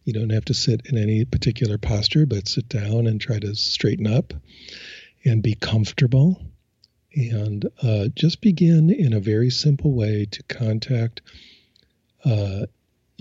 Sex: male